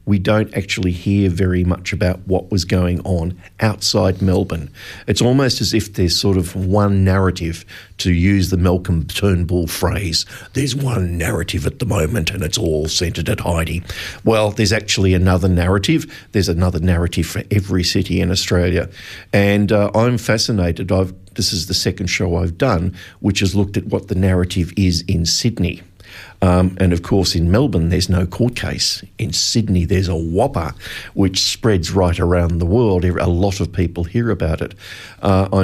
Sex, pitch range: male, 90-100 Hz